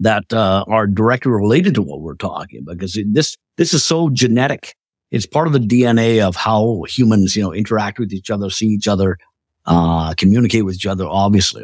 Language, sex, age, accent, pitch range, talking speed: English, male, 50-69, American, 100-135 Hz, 195 wpm